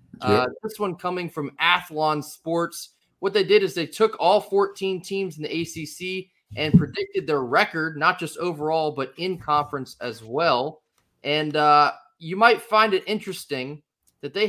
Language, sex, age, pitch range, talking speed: English, male, 20-39, 135-170 Hz, 165 wpm